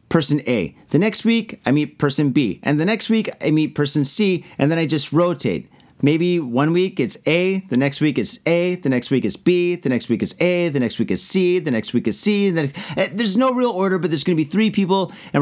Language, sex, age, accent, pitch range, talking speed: English, male, 30-49, American, 145-190 Hz, 255 wpm